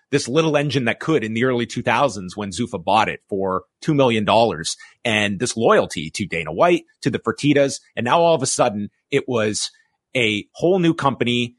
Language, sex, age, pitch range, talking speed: English, male, 30-49, 115-145 Hz, 190 wpm